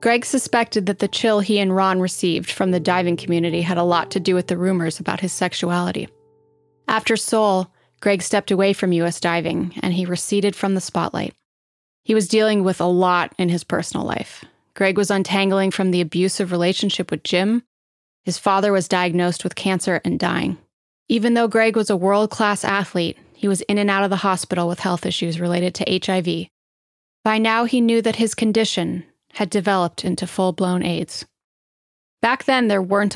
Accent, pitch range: American, 180-215 Hz